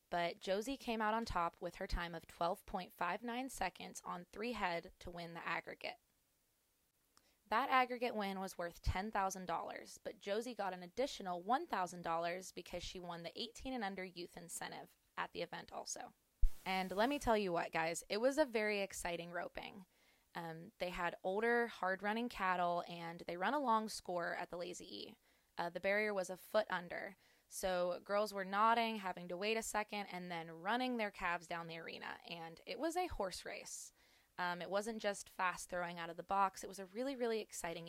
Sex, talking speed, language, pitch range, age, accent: female, 185 wpm, English, 175-220 Hz, 20-39, American